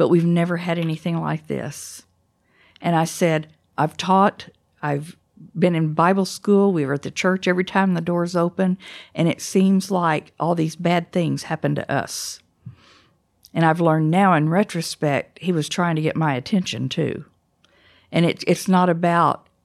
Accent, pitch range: American, 150-180 Hz